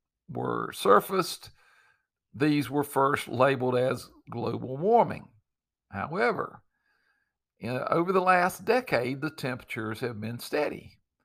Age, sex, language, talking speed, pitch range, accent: 60-79, male, English, 105 wpm, 115-155 Hz, American